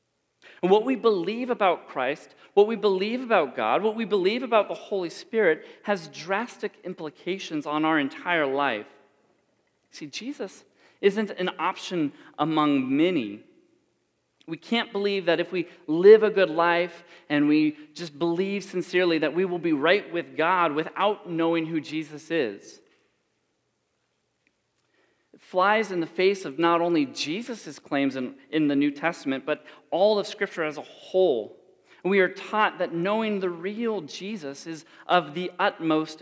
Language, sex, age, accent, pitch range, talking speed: English, male, 40-59, American, 155-205 Hz, 150 wpm